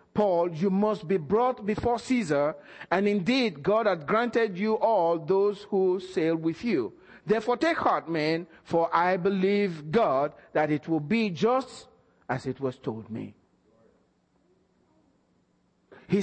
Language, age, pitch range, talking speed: English, 50-69, 185-280 Hz, 140 wpm